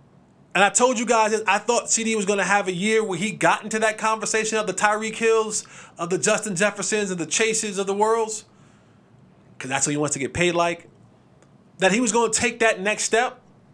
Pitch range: 175-230 Hz